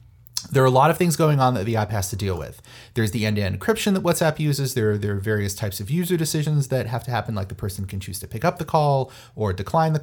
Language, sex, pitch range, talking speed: English, male, 105-130 Hz, 280 wpm